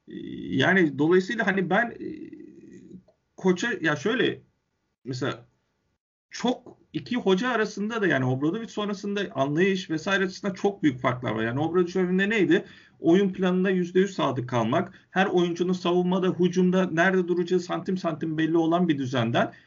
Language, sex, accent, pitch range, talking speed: Turkish, male, native, 145-185 Hz, 135 wpm